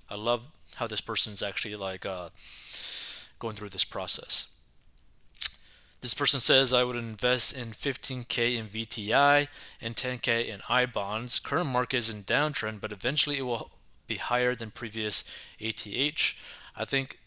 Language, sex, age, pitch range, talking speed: English, male, 20-39, 105-125 Hz, 145 wpm